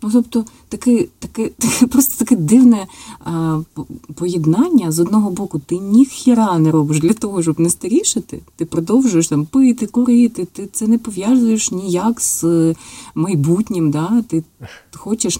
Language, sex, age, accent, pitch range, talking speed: Ukrainian, female, 30-49, native, 155-225 Hz, 150 wpm